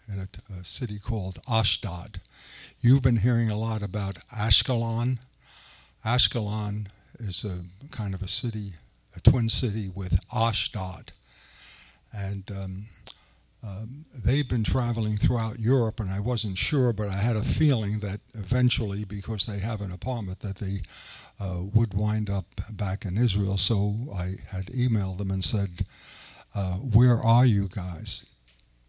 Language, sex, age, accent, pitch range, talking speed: English, male, 60-79, American, 95-115 Hz, 145 wpm